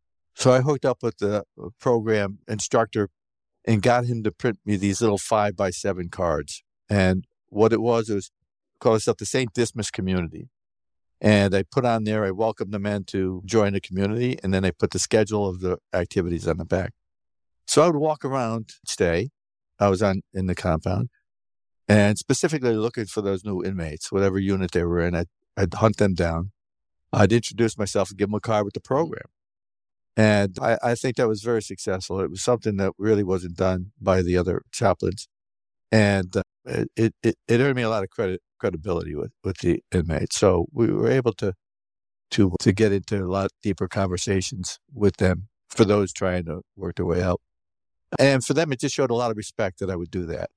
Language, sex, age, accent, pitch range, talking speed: English, male, 60-79, American, 95-115 Hz, 200 wpm